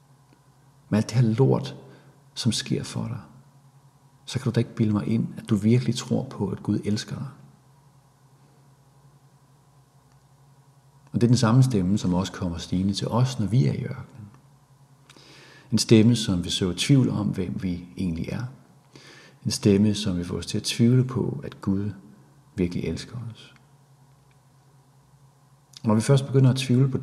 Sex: male